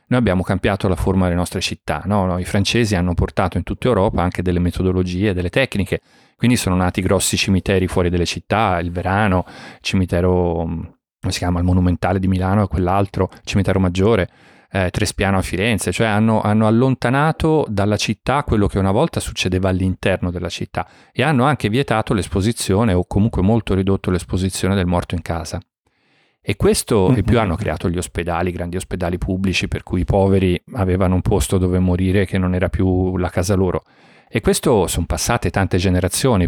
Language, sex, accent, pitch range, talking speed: Italian, male, native, 90-105 Hz, 185 wpm